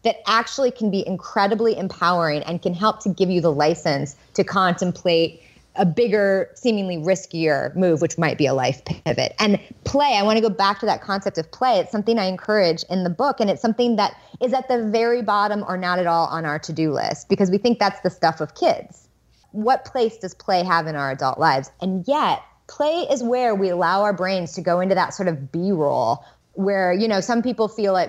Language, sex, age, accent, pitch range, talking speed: English, female, 30-49, American, 165-215 Hz, 220 wpm